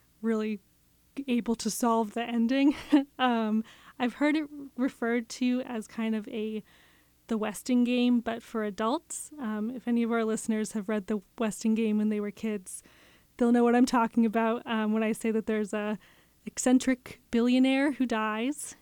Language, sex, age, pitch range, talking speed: English, female, 20-39, 220-245 Hz, 170 wpm